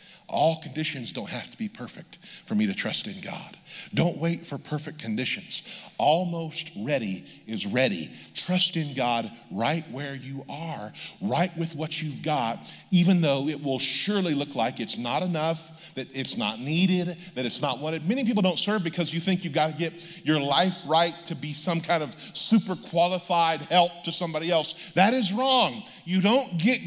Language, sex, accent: English, male, American